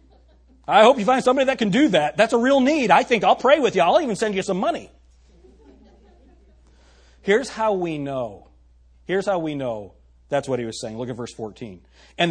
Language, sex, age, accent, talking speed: English, male, 40-59, American, 210 wpm